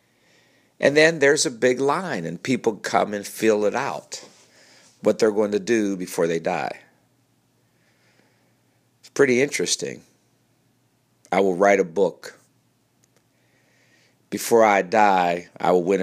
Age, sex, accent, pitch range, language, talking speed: 50-69, male, American, 90-120 Hz, English, 130 wpm